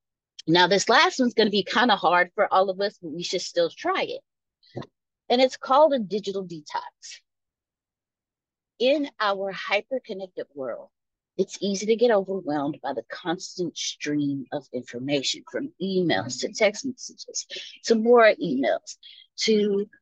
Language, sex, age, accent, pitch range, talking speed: English, female, 30-49, American, 155-245 Hz, 145 wpm